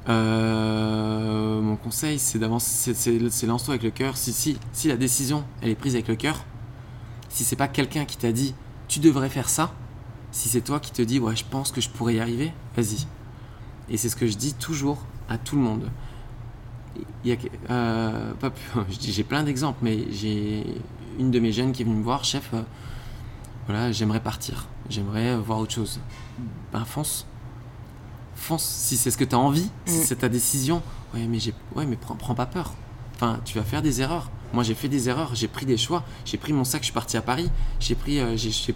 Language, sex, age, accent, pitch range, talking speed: French, male, 20-39, French, 115-130 Hz, 215 wpm